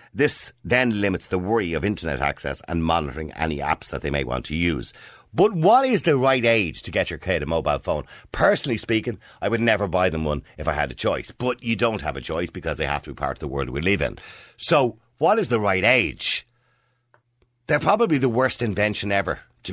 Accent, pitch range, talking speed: Irish, 85-130 Hz, 230 wpm